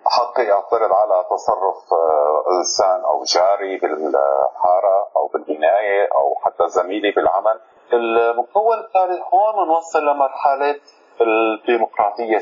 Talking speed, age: 95 wpm, 40-59